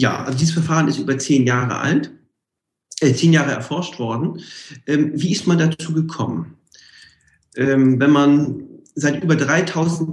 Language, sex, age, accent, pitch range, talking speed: German, male, 40-59, German, 130-155 Hz, 155 wpm